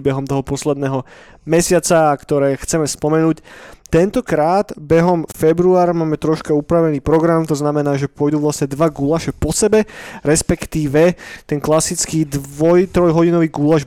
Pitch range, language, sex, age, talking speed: 140-170 Hz, Slovak, male, 20-39, 130 wpm